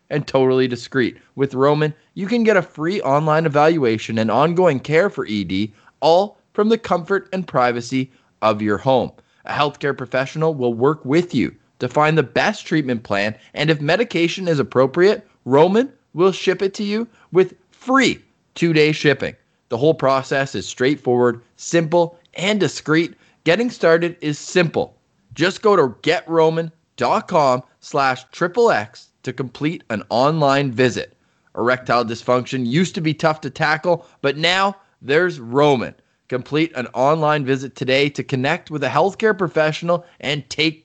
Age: 20-39